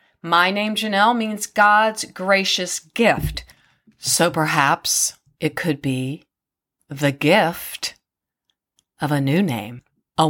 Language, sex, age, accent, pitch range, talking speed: English, female, 40-59, American, 165-230 Hz, 110 wpm